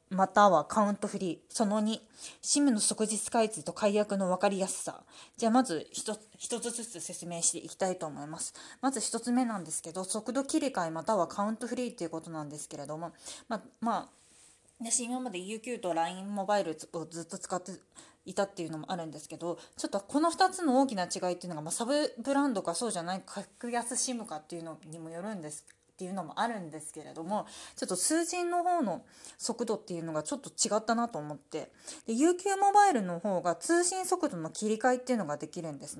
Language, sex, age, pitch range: Japanese, female, 20-39, 175-250 Hz